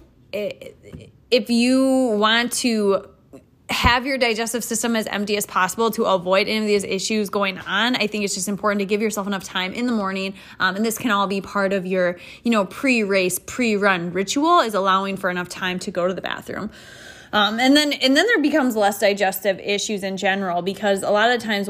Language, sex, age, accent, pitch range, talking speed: English, female, 20-39, American, 185-220 Hz, 200 wpm